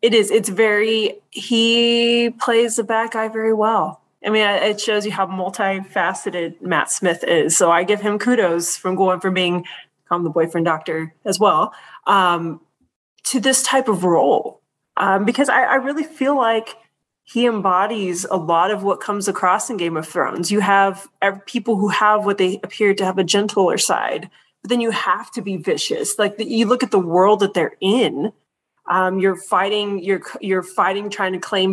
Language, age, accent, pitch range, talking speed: English, 20-39, American, 185-225 Hz, 185 wpm